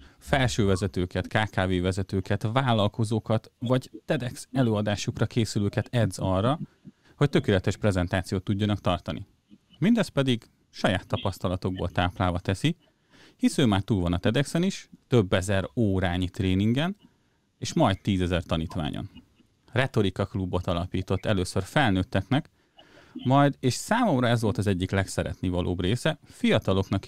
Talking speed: 115 wpm